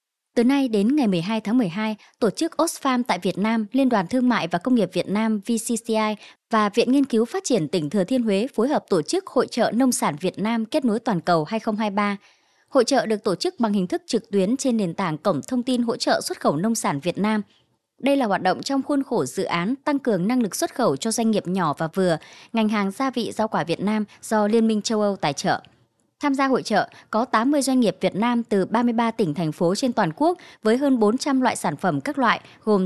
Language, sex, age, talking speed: Vietnamese, male, 20-39, 245 wpm